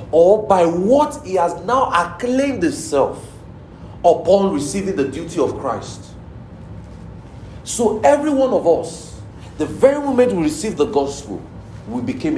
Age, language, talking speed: 40-59, English, 135 wpm